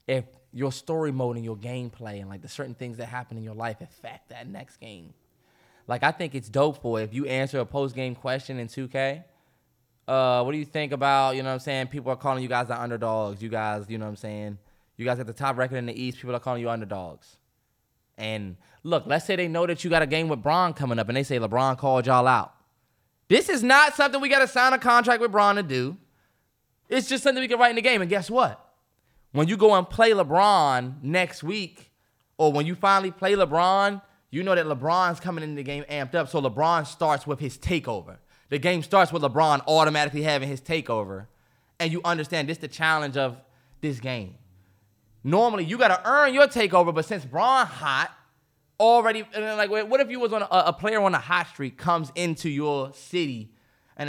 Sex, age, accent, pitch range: male, 20-39, American, 125-175 Hz